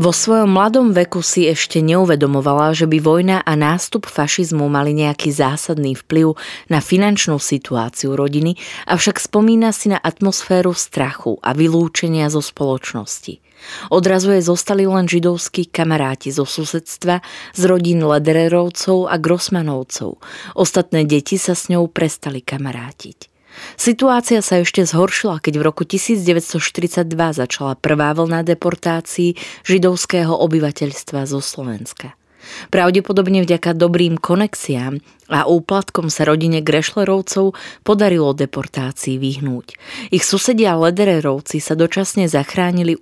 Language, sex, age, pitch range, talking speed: Slovak, female, 20-39, 150-185 Hz, 115 wpm